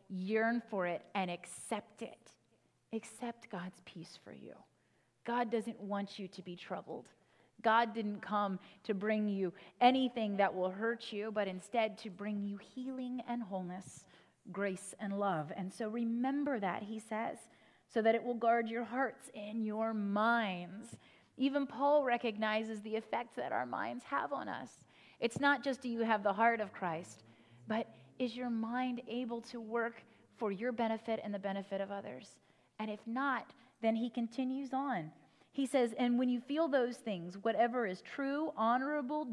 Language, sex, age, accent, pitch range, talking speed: English, female, 30-49, American, 205-260 Hz, 170 wpm